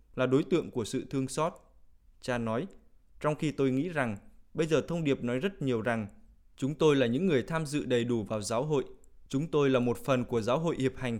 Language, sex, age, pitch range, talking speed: Vietnamese, male, 20-39, 115-145 Hz, 235 wpm